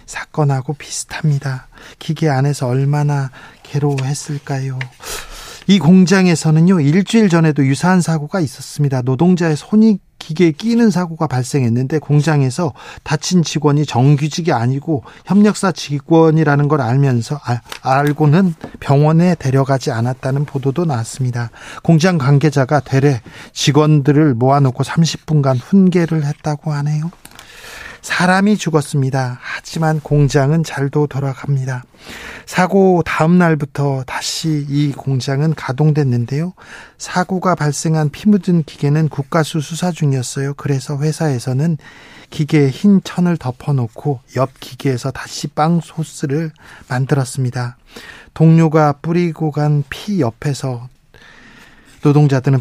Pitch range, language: 135-160 Hz, Korean